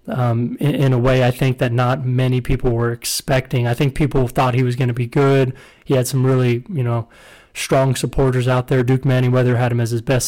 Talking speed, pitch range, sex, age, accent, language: 235 wpm, 125-140 Hz, male, 20-39, American, English